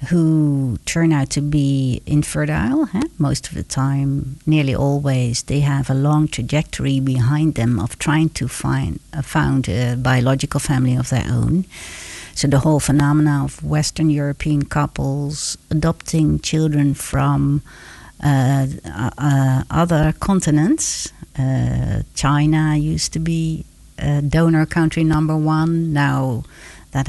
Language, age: English, 60-79